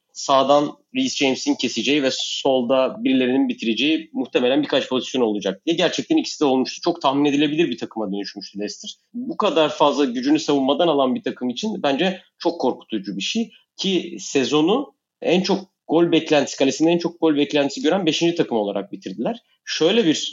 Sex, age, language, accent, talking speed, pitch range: male, 30-49, Turkish, native, 165 wpm, 120-170 Hz